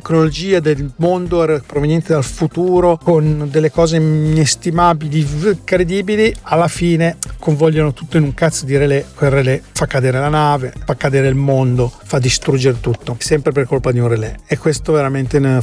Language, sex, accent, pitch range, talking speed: Italian, male, native, 130-160 Hz, 155 wpm